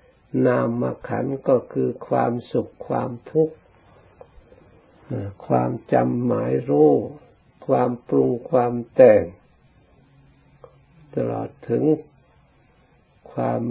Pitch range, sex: 95-130 Hz, male